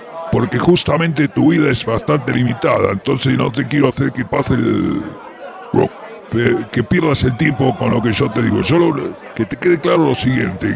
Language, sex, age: English, female, 50-69